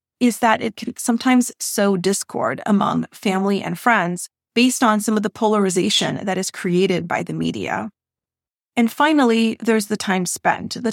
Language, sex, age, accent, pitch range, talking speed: English, female, 30-49, American, 195-245 Hz, 165 wpm